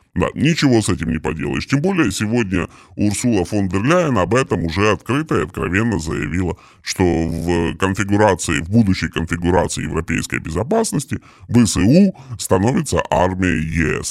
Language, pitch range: Russian, 85-115 Hz